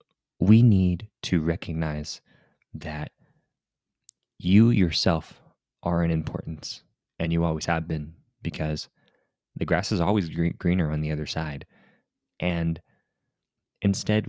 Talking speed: 120 wpm